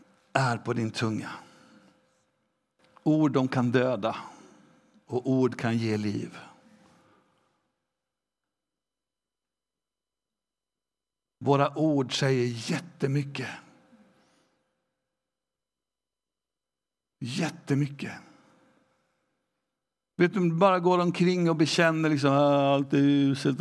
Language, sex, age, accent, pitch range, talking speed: Swedish, male, 60-79, native, 135-185 Hz, 80 wpm